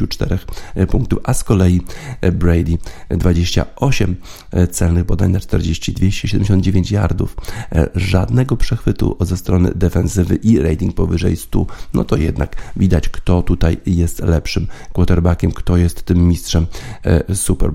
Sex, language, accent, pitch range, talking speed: male, Polish, native, 90-110 Hz, 120 wpm